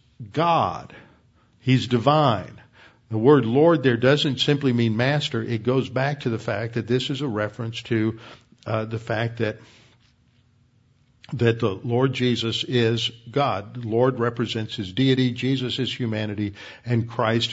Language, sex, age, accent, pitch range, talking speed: English, male, 60-79, American, 115-135 Hz, 145 wpm